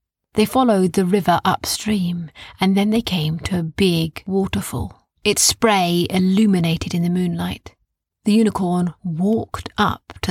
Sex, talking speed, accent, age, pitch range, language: female, 140 wpm, British, 30-49, 165-205 Hz, English